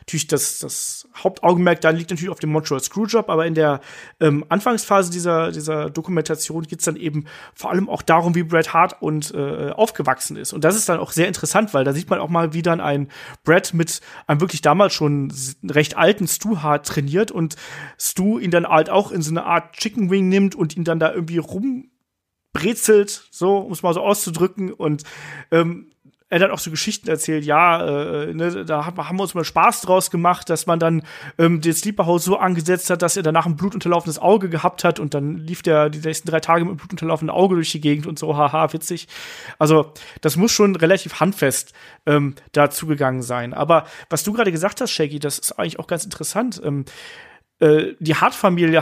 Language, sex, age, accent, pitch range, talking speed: German, male, 30-49, German, 155-185 Hz, 205 wpm